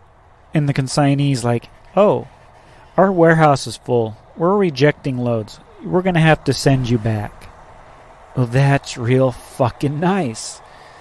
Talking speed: 135 wpm